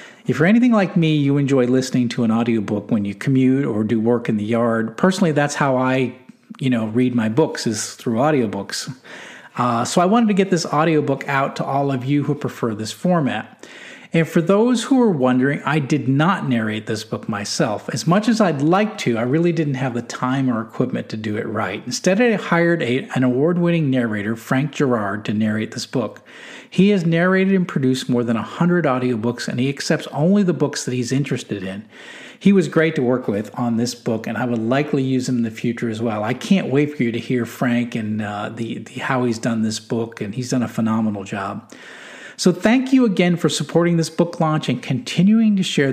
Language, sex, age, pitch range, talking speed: English, male, 40-59, 115-165 Hz, 220 wpm